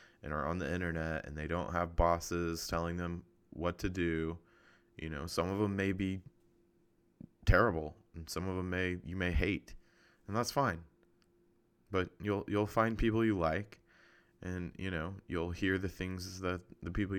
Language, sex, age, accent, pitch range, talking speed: English, male, 20-39, American, 80-95 Hz, 180 wpm